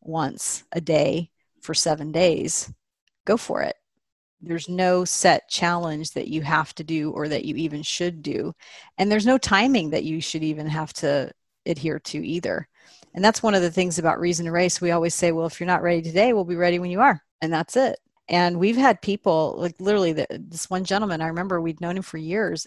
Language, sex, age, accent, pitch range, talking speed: English, female, 40-59, American, 160-195 Hz, 215 wpm